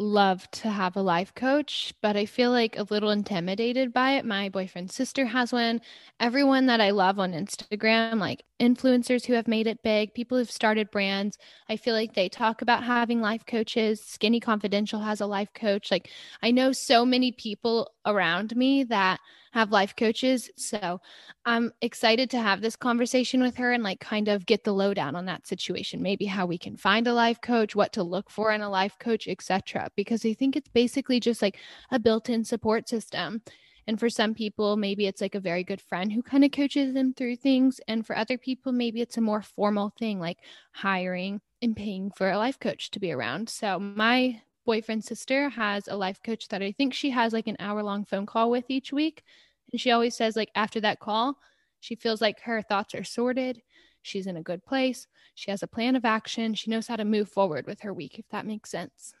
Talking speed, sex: 215 wpm, female